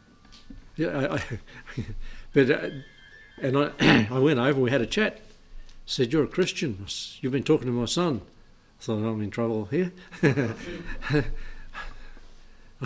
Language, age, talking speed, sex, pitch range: English, 60-79, 140 wpm, male, 110-145 Hz